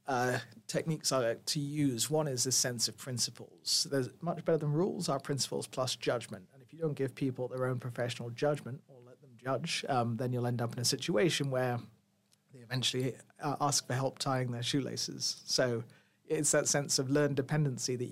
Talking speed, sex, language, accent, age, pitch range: 200 wpm, male, English, British, 40-59, 120-145 Hz